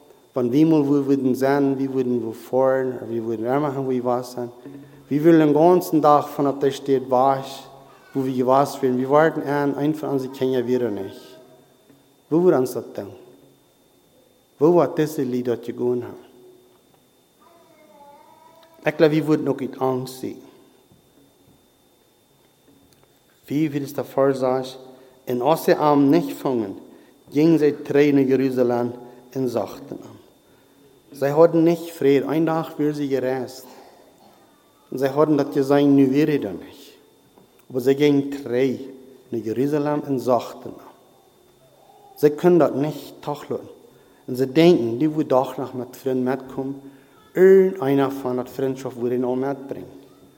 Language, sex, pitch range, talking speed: English, male, 130-150 Hz, 150 wpm